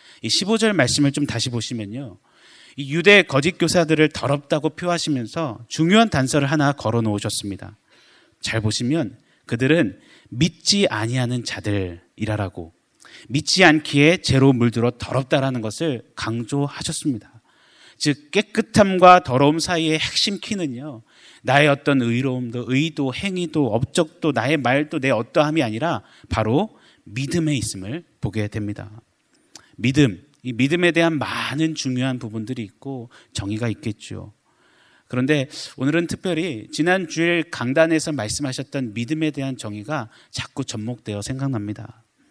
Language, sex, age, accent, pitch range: Korean, male, 30-49, native, 115-160 Hz